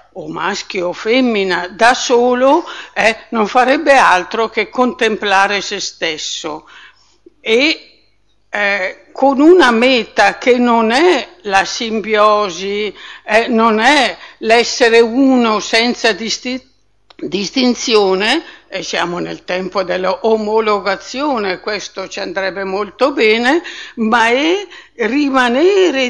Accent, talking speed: native, 100 wpm